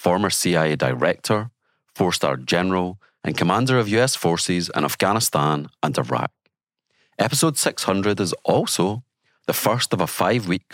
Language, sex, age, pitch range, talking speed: English, male, 40-59, 80-115 Hz, 130 wpm